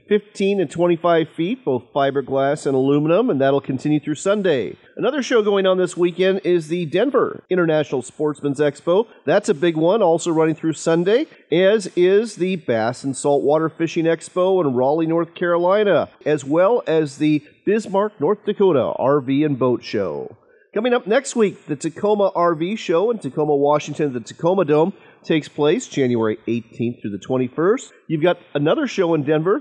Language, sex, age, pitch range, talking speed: English, male, 40-59, 145-180 Hz, 170 wpm